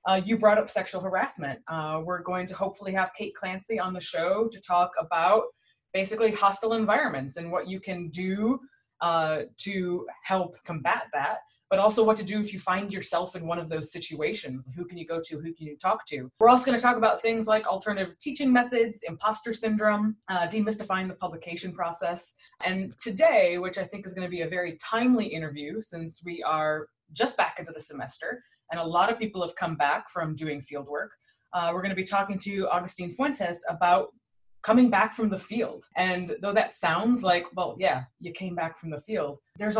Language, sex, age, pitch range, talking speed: English, female, 20-39, 160-205 Hz, 200 wpm